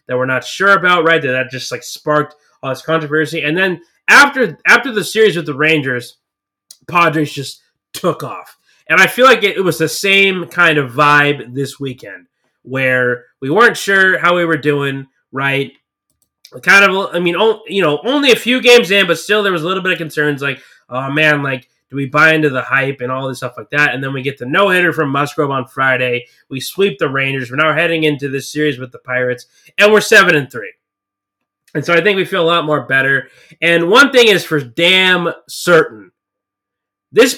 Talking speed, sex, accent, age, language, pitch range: 210 wpm, male, American, 20-39, English, 135-190 Hz